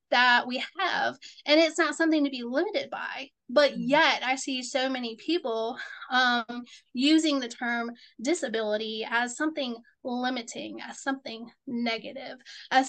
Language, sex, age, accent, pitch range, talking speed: English, female, 10-29, American, 235-285 Hz, 140 wpm